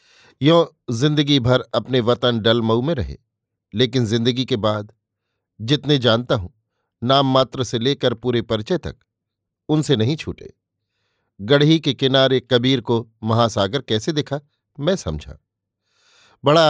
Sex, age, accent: male, 50-69, native